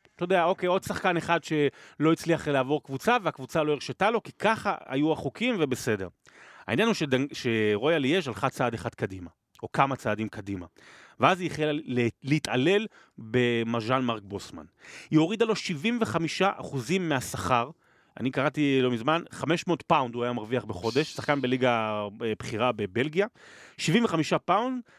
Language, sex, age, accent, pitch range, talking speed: Hebrew, male, 30-49, native, 125-185 Hz, 145 wpm